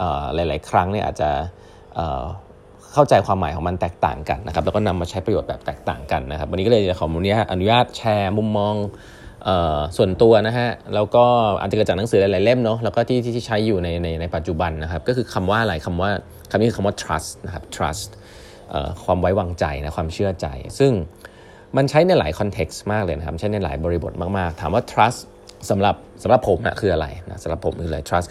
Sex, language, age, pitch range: male, Thai, 20-39, 85-110 Hz